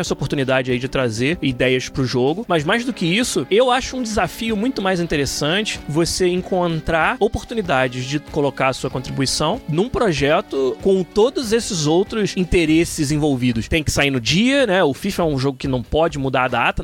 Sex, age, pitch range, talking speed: male, 20-39, 145-210 Hz, 190 wpm